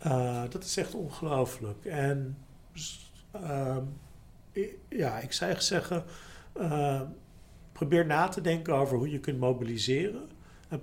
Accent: Dutch